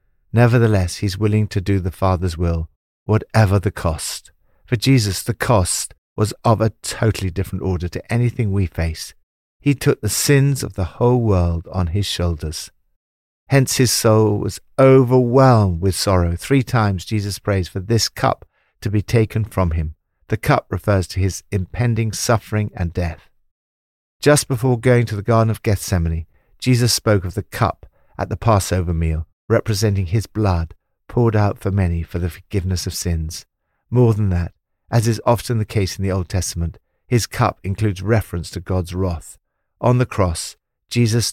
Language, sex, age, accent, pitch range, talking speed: English, male, 50-69, British, 90-115 Hz, 170 wpm